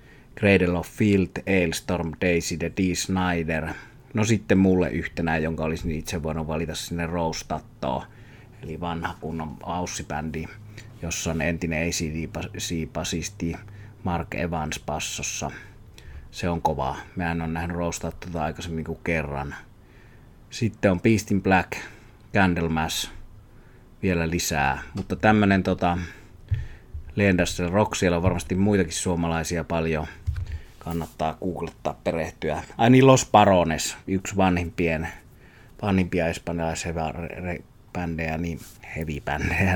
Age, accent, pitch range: 30-49, native, 80-95 Hz